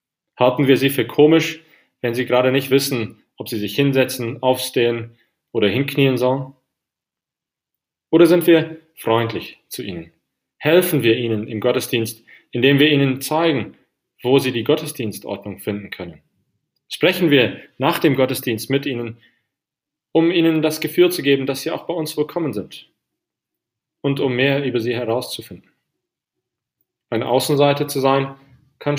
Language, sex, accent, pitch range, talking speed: English, male, German, 120-150 Hz, 145 wpm